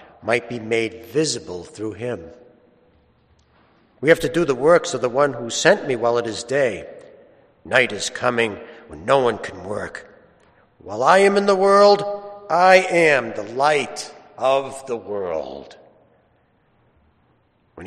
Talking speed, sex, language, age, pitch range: 150 wpm, male, English, 60-79, 115-175 Hz